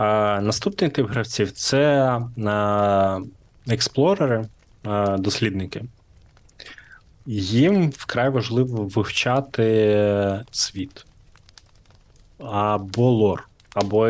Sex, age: male, 20-39